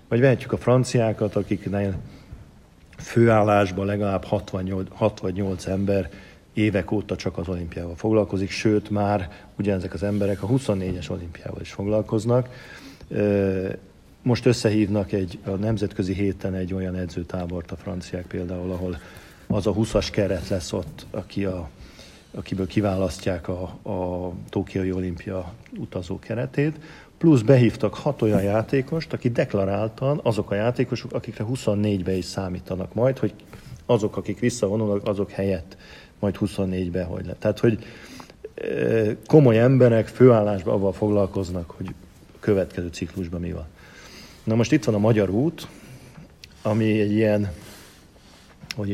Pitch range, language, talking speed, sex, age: 95-110 Hz, Hungarian, 125 wpm, male, 50-69